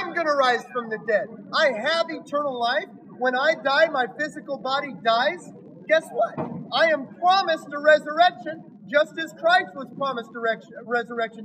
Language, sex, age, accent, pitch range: Chinese, male, 40-59, American, 225-280 Hz